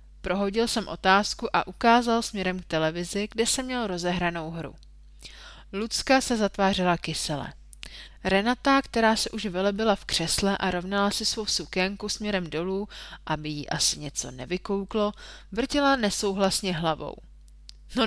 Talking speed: 135 wpm